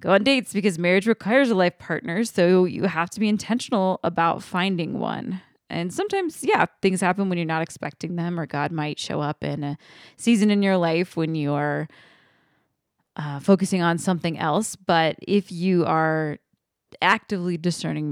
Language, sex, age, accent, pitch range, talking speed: English, female, 20-39, American, 155-185 Hz, 170 wpm